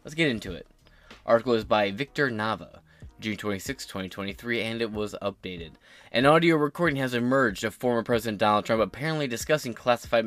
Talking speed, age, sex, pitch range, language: 170 wpm, 20-39, male, 100-120 Hz, English